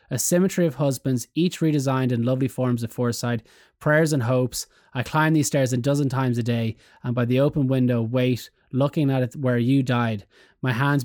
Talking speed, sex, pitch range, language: 200 wpm, male, 125-160 Hz, English